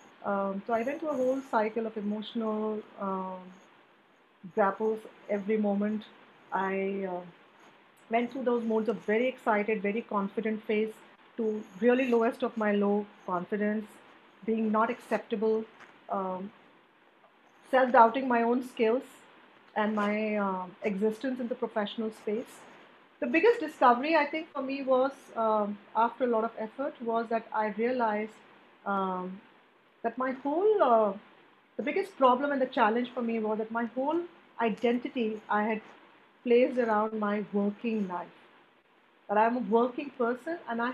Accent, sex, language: Indian, female, English